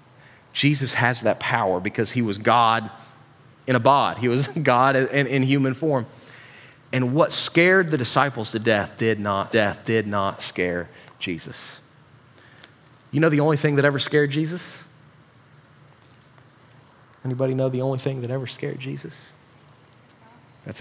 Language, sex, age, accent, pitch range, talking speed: English, male, 30-49, American, 125-150 Hz, 140 wpm